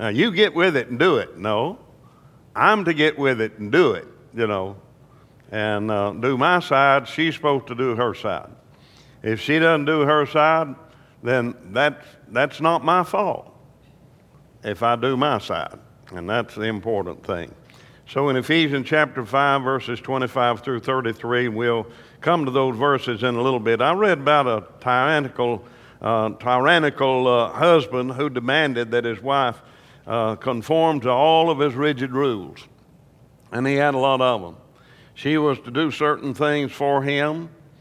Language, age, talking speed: English, 60-79, 170 wpm